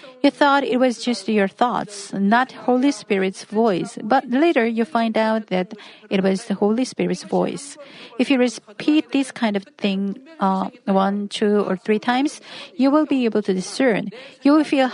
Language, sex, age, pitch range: Korean, female, 40-59, 205-270 Hz